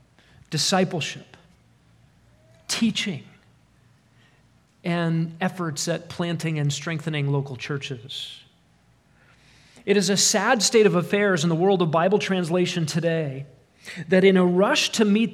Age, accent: 40-59, American